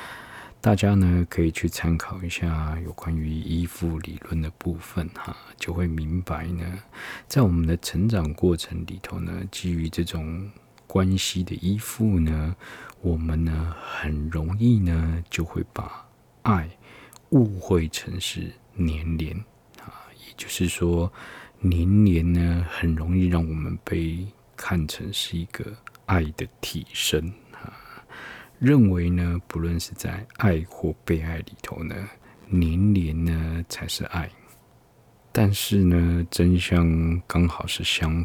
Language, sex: Chinese, male